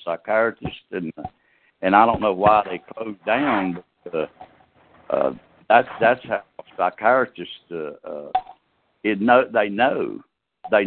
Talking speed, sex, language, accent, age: 130 wpm, male, English, American, 60-79